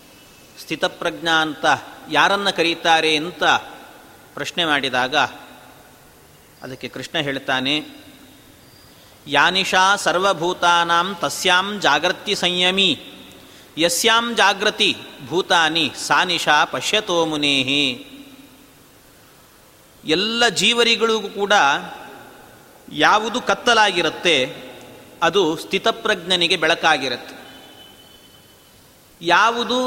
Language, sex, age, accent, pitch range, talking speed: Kannada, male, 40-59, native, 155-215 Hz, 55 wpm